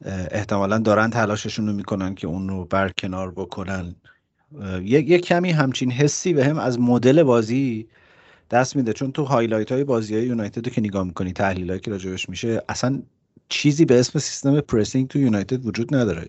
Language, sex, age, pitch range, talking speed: Persian, male, 30-49, 100-130 Hz, 165 wpm